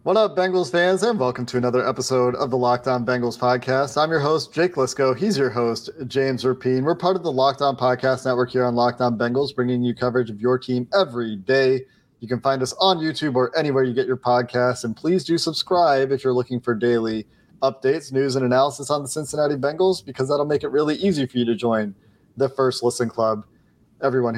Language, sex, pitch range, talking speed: English, male, 120-140 Hz, 215 wpm